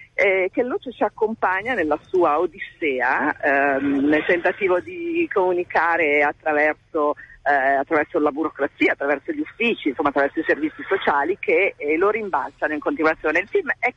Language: Italian